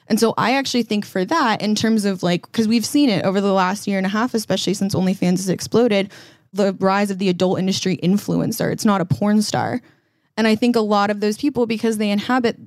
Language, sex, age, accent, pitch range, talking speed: English, female, 20-39, American, 180-215 Hz, 235 wpm